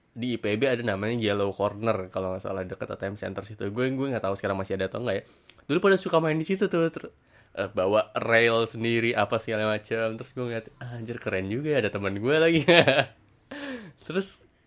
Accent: native